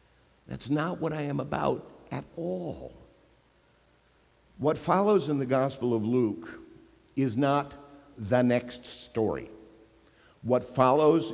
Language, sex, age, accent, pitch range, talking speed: English, male, 50-69, American, 110-145 Hz, 115 wpm